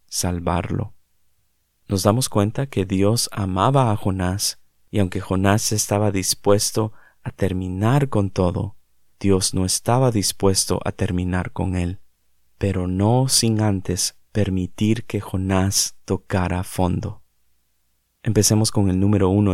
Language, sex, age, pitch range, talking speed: Spanish, male, 30-49, 95-110 Hz, 125 wpm